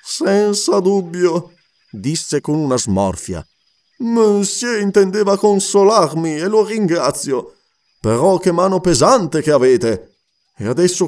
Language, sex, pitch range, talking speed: Italian, male, 135-210 Hz, 110 wpm